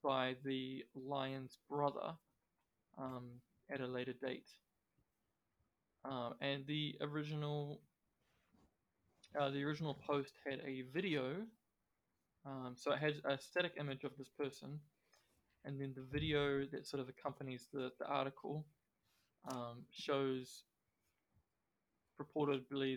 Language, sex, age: English, male, 20-39